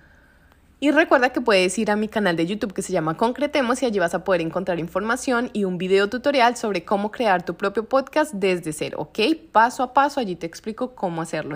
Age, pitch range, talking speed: 20-39, 180-230 Hz, 220 wpm